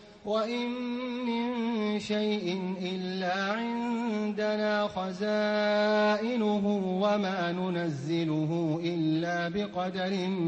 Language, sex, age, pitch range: English, male, 30-49, 170-210 Hz